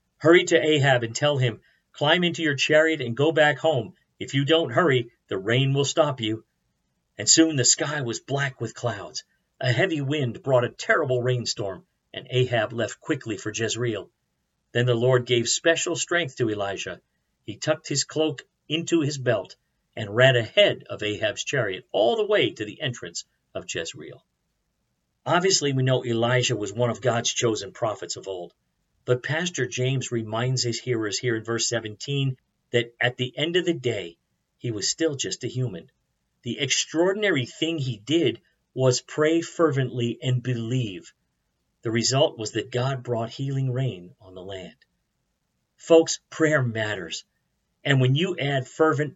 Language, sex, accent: English, male, American